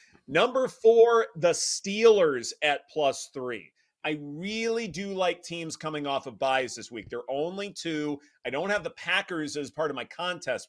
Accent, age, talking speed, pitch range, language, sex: American, 30-49, 175 wpm, 135-190 Hz, English, male